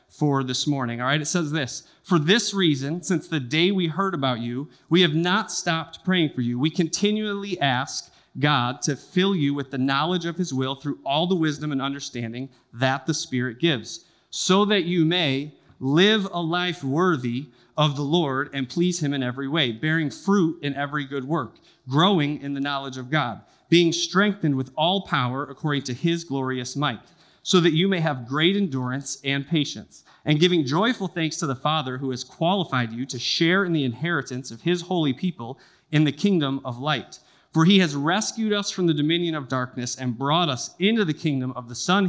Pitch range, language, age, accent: 130-175 Hz, English, 30-49, American